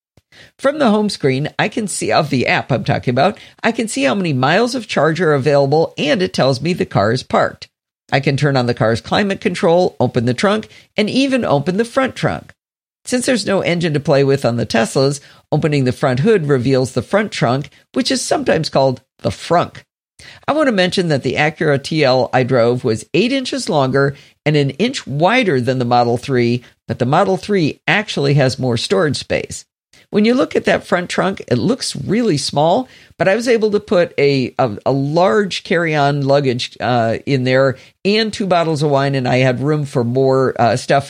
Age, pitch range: 50-69, 130-195 Hz